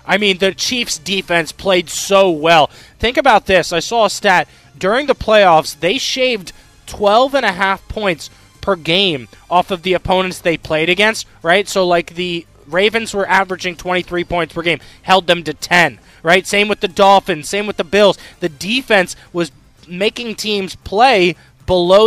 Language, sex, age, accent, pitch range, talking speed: English, male, 20-39, American, 165-200 Hz, 170 wpm